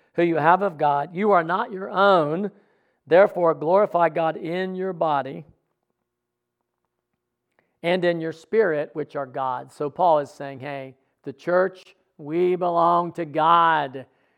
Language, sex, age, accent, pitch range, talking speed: English, male, 50-69, American, 140-170 Hz, 140 wpm